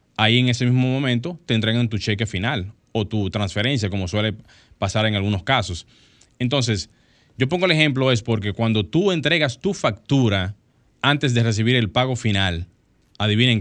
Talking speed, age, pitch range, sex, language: 170 wpm, 20-39, 105-120 Hz, male, Spanish